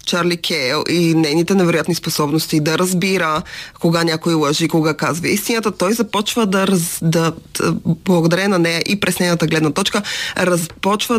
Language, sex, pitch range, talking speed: Bulgarian, female, 160-195 Hz, 155 wpm